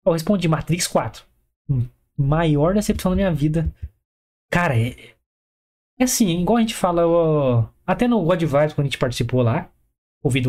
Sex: male